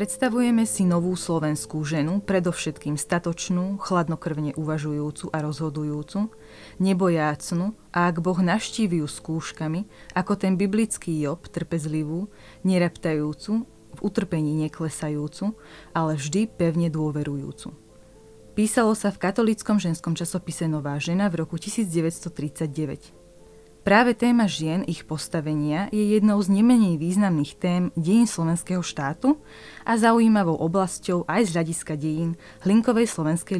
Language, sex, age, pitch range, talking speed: Slovak, female, 20-39, 155-200 Hz, 115 wpm